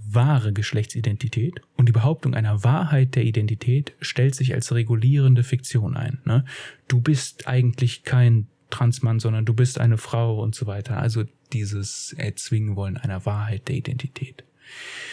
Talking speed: 145 wpm